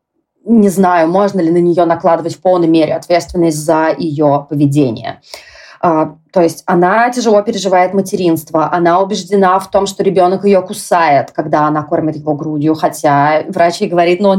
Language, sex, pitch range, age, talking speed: Russian, female, 170-215 Hz, 20-39, 165 wpm